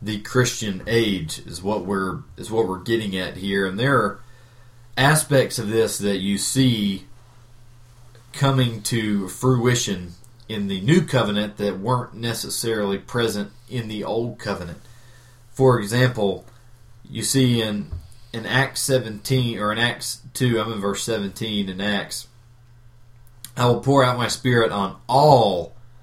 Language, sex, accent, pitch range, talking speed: English, male, American, 105-125 Hz, 145 wpm